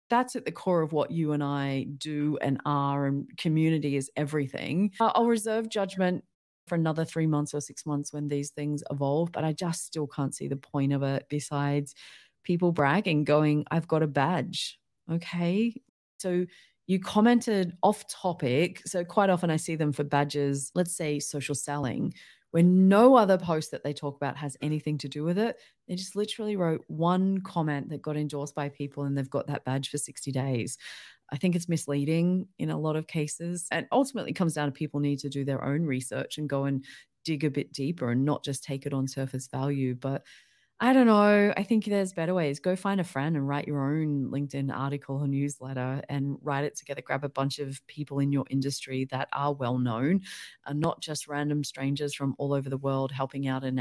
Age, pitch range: 30-49, 140-180 Hz